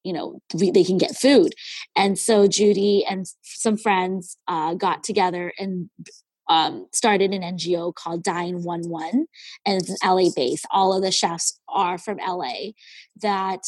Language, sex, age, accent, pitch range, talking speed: English, female, 20-39, American, 180-210 Hz, 160 wpm